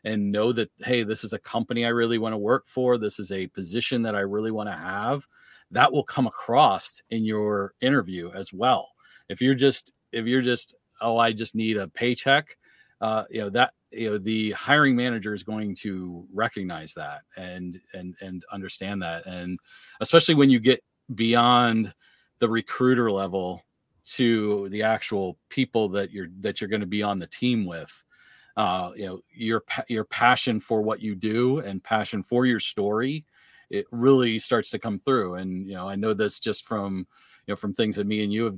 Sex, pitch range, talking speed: male, 100-125 Hz, 195 wpm